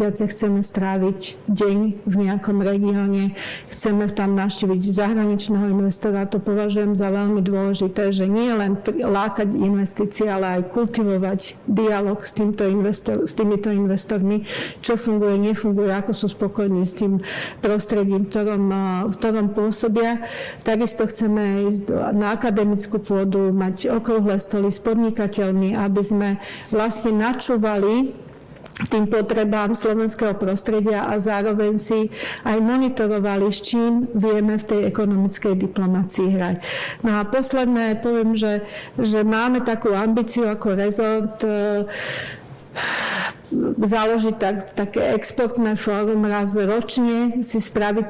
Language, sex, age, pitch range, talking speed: Slovak, female, 50-69, 195-220 Hz, 120 wpm